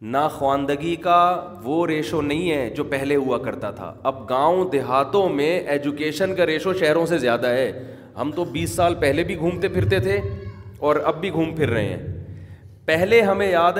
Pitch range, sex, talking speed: 145-195 Hz, male, 185 wpm